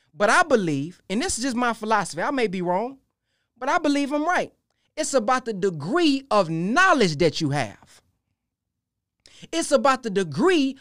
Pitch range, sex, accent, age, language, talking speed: 190-300 Hz, male, American, 30-49, English, 170 wpm